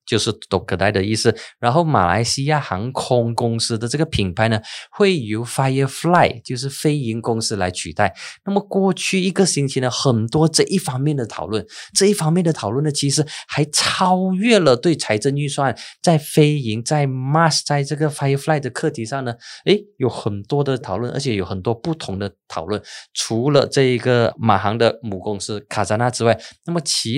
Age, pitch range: 20-39, 110-145 Hz